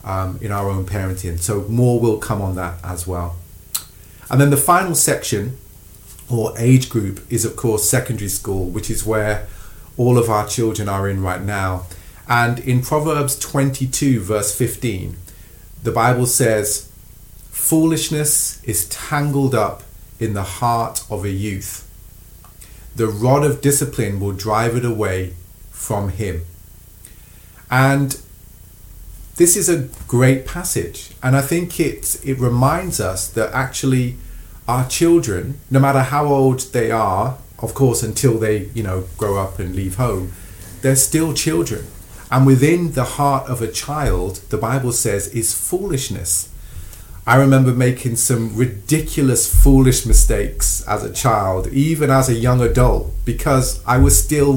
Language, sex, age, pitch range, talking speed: English, male, 30-49, 95-130 Hz, 145 wpm